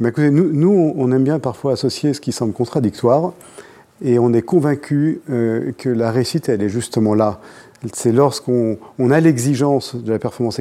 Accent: French